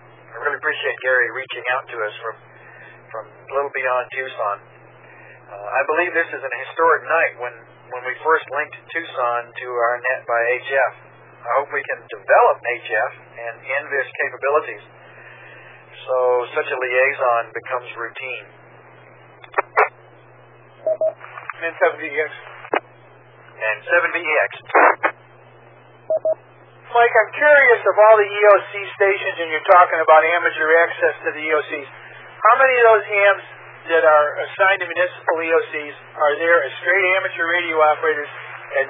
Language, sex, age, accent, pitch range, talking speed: English, male, 50-69, American, 130-190 Hz, 140 wpm